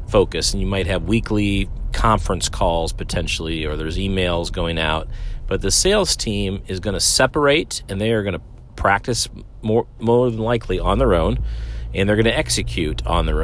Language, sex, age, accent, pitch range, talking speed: English, male, 40-59, American, 90-115 Hz, 190 wpm